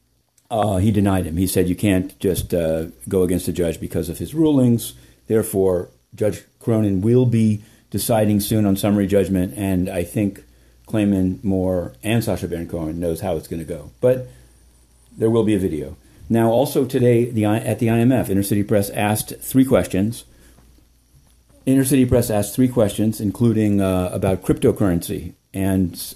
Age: 50-69